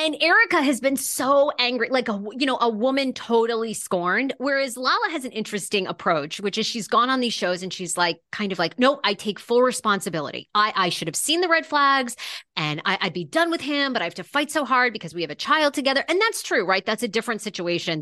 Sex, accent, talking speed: female, American, 250 wpm